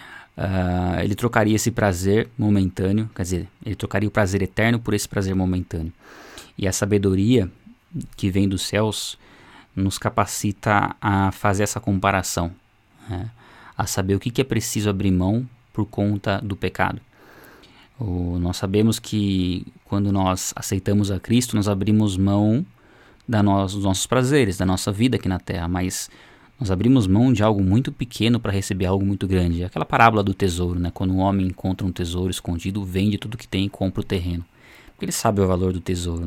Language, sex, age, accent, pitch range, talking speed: Portuguese, male, 20-39, Brazilian, 95-115 Hz, 175 wpm